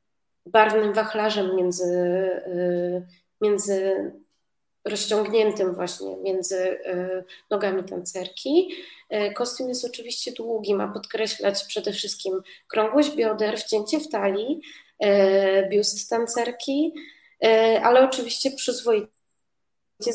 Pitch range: 190-225 Hz